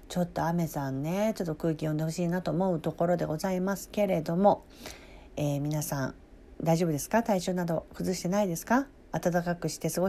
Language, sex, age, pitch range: Japanese, female, 40-59, 160-220 Hz